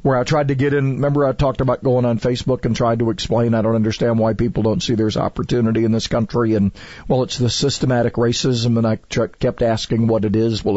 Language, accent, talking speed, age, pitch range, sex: English, American, 240 wpm, 50-69, 115-170 Hz, male